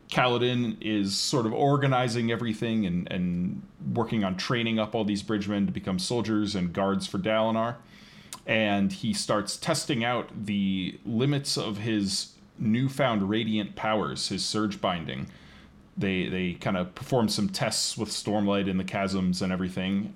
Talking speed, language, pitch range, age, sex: 150 wpm, English, 100-125 Hz, 20-39, male